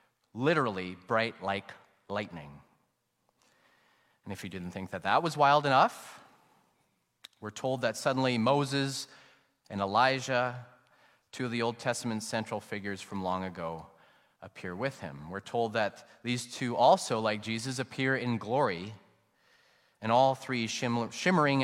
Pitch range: 100-125 Hz